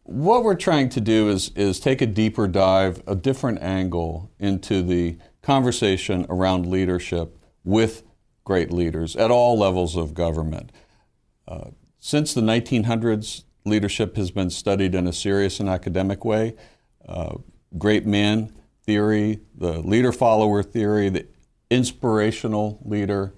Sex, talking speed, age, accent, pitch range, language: male, 135 wpm, 50-69, American, 95-120 Hz, English